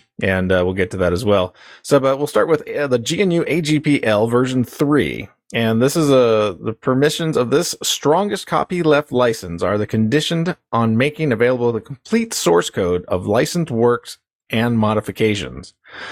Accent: American